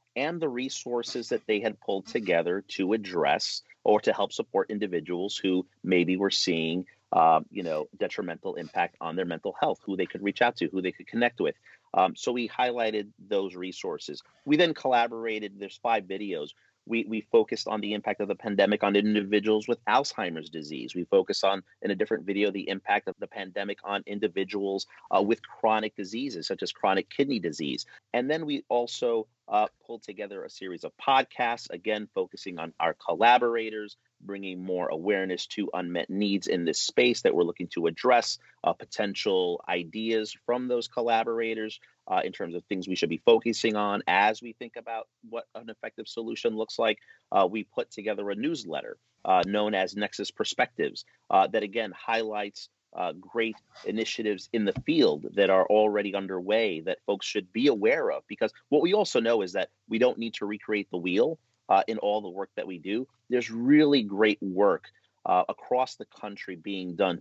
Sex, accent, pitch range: male, American, 100-115 Hz